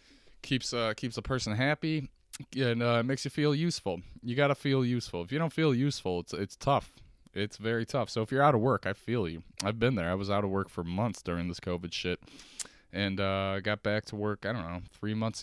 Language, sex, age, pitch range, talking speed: English, male, 20-39, 95-125 Hz, 245 wpm